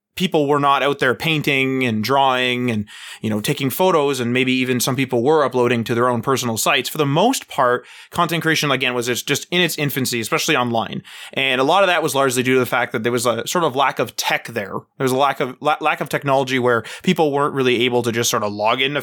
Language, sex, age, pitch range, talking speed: English, male, 20-39, 125-155 Hz, 245 wpm